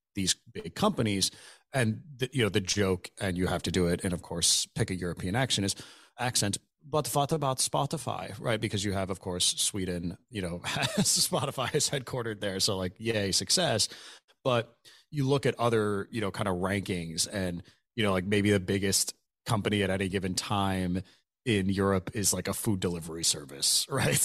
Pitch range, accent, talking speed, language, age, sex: 95-115 Hz, American, 190 wpm, English, 30-49, male